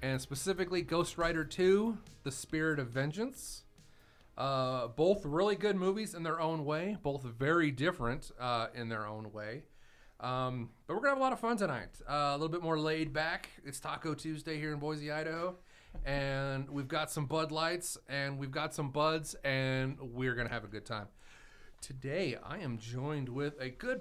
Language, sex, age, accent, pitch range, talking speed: English, male, 30-49, American, 125-160 Hz, 190 wpm